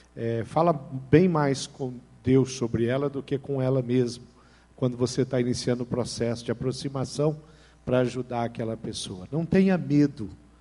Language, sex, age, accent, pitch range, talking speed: Portuguese, male, 50-69, Brazilian, 120-150 Hz, 160 wpm